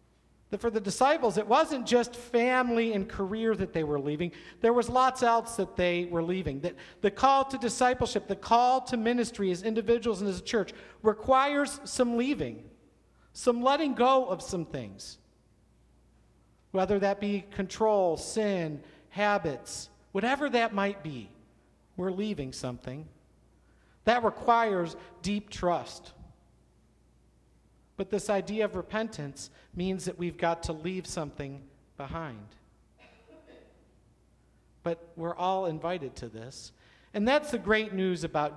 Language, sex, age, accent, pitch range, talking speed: English, male, 50-69, American, 160-225 Hz, 135 wpm